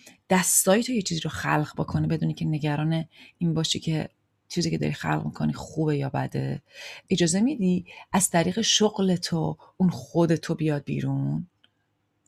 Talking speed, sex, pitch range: 155 wpm, female, 145-185 Hz